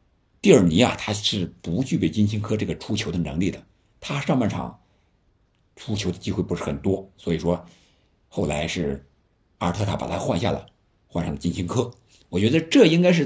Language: Chinese